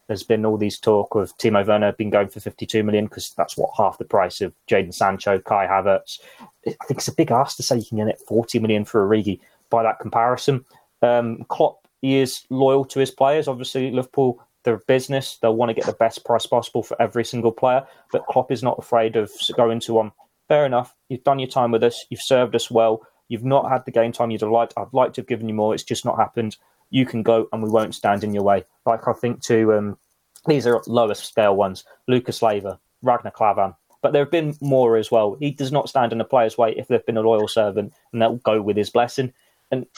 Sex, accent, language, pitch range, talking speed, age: male, British, English, 105-125 Hz, 240 wpm, 20-39